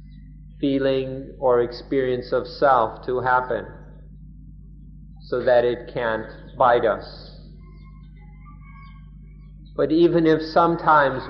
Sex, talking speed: male, 90 wpm